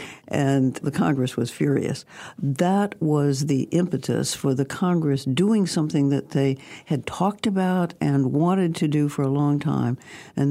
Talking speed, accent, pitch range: 160 wpm, American, 135-165 Hz